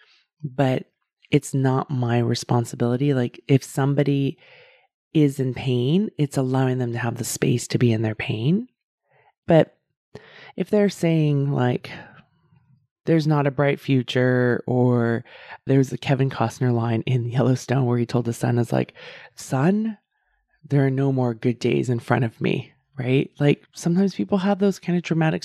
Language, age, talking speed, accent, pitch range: English, 20-39, 160 wpm, American, 125-170 Hz